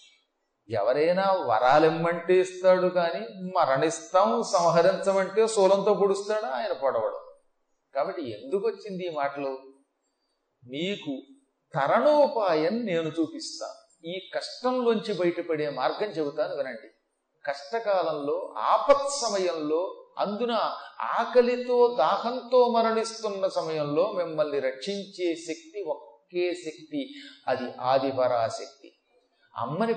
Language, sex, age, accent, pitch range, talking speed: Telugu, male, 40-59, native, 150-225 Hz, 85 wpm